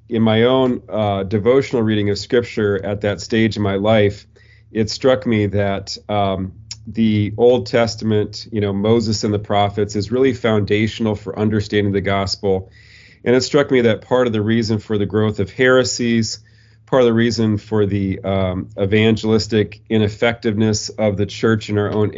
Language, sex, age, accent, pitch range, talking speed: English, male, 40-59, American, 100-110 Hz, 175 wpm